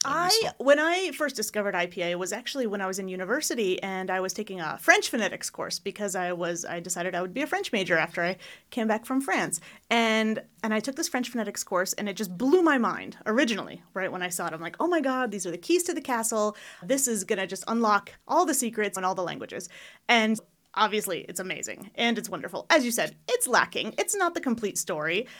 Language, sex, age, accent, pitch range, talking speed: English, female, 30-49, American, 195-265 Hz, 235 wpm